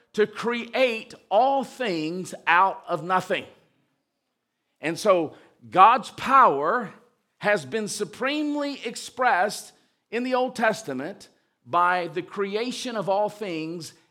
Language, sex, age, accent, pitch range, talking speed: English, male, 50-69, American, 160-220 Hz, 105 wpm